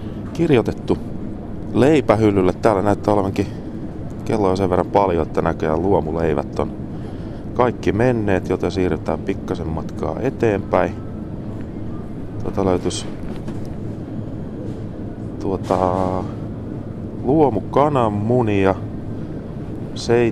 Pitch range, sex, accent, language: 85-110 Hz, male, native, Finnish